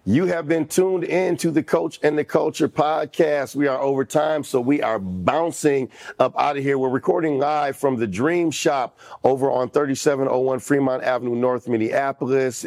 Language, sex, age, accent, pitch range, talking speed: English, male, 40-59, American, 115-135 Hz, 180 wpm